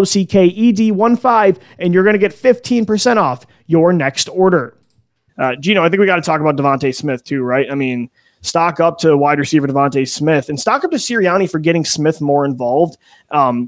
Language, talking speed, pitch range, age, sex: English, 195 wpm, 145-180 Hz, 30-49, male